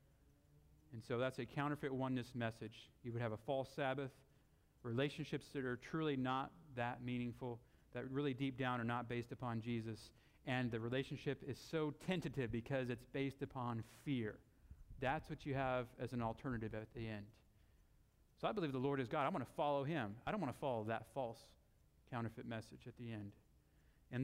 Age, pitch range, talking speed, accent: 40-59, 115-140 Hz, 185 wpm, American